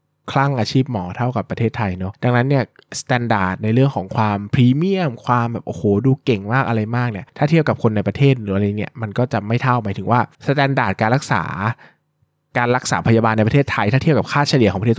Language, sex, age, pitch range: Thai, male, 20-39, 105-130 Hz